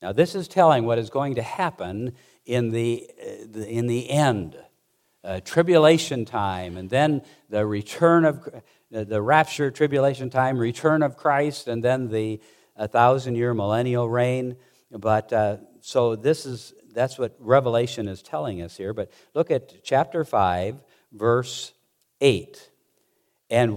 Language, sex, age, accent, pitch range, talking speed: English, male, 60-79, American, 110-150 Hz, 140 wpm